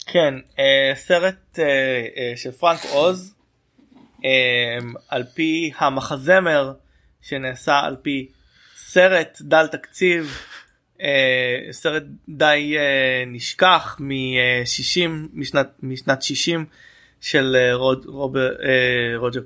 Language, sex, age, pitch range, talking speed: Hebrew, male, 20-39, 125-150 Hz, 70 wpm